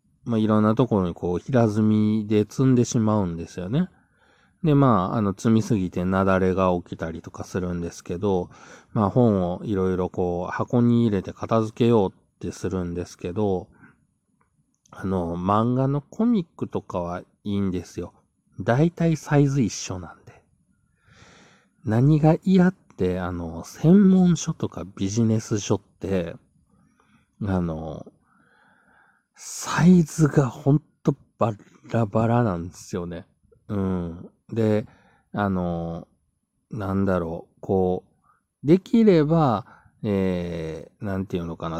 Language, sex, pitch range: Japanese, male, 90-120 Hz